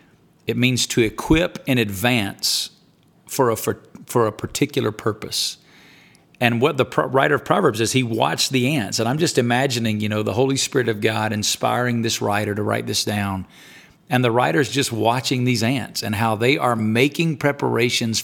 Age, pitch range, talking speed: 40-59, 105-130 Hz, 180 wpm